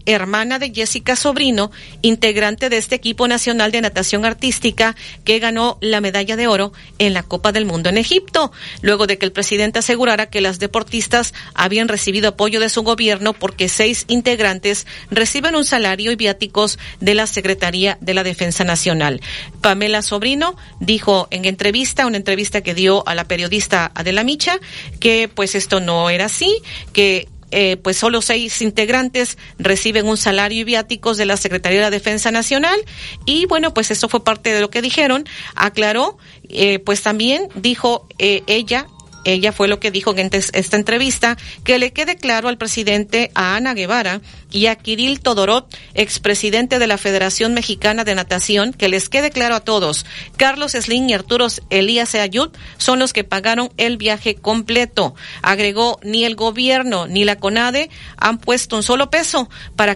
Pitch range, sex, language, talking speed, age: 200-240 Hz, female, Spanish, 170 wpm, 40-59